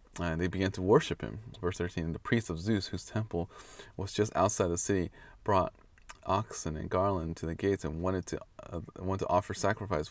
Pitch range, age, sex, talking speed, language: 85-100 Hz, 20-39, male, 200 wpm, English